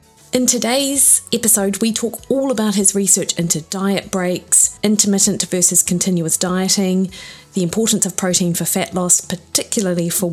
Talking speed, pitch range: 145 wpm, 180-210 Hz